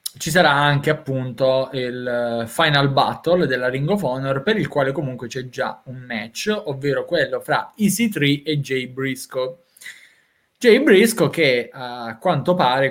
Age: 20-39